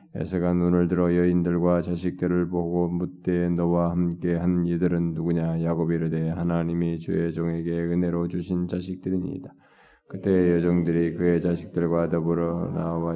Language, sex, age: Korean, male, 20-39